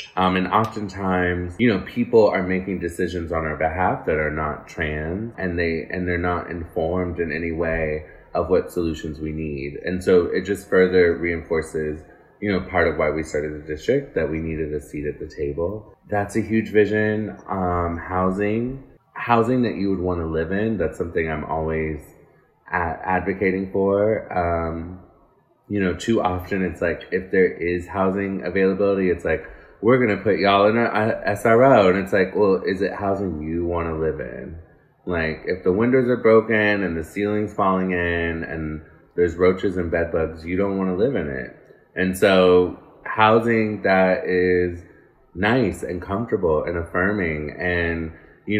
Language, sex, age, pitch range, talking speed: English, male, 20-39, 85-105 Hz, 175 wpm